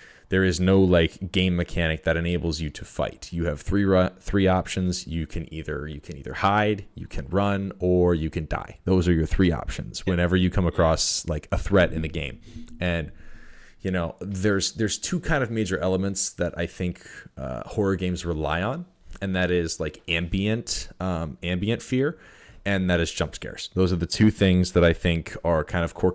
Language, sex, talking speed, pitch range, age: English, male, 205 wpm, 80-95 Hz, 20-39